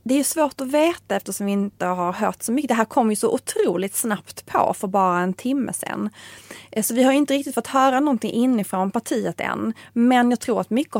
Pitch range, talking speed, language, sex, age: 190-235 Hz, 230 wpm, Swedish, female, 30-49